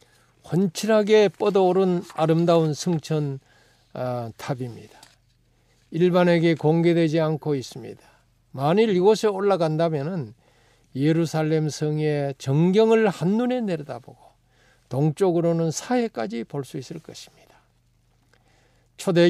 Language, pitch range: Korean, 125-160 Hz